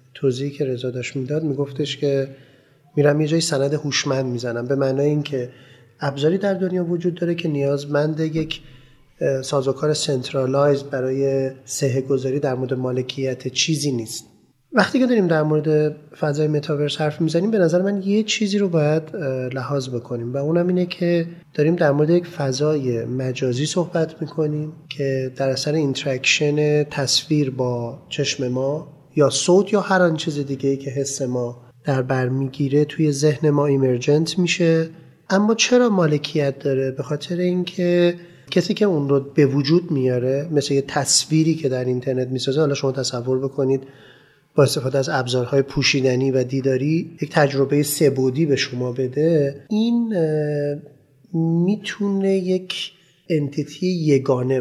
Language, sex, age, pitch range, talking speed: Persian, male, 30-49, 135-160 Hz, 145 wpm